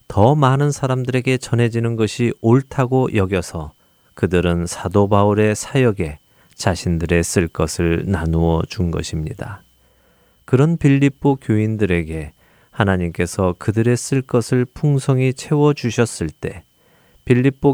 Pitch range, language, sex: 90-130 Hz, Korean, male